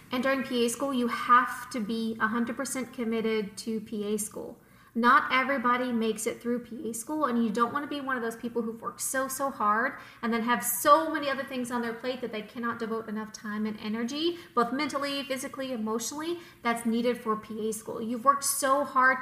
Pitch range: 225-260 Hz